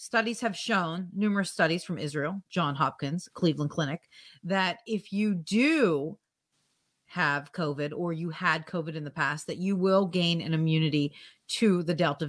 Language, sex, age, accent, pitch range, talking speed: English, female, 40-59, American, 170-205 Hz, 160 wpm